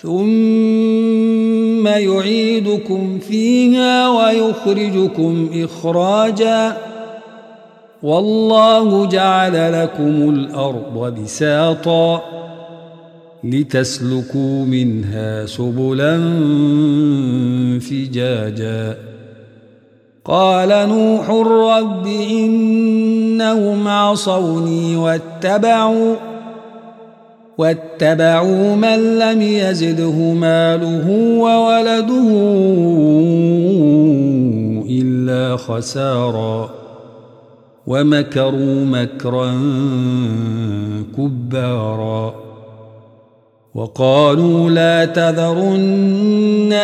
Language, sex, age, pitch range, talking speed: Arabic, male, 50-69, 135-220 Hz, 45 wpm